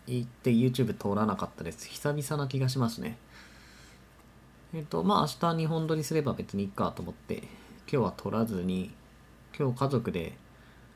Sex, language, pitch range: male, Japanese, 100-155 Hz